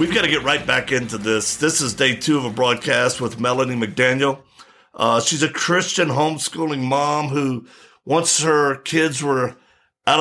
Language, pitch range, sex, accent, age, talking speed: English, 130-165 Hz, male, American, 50-69, 175 wpm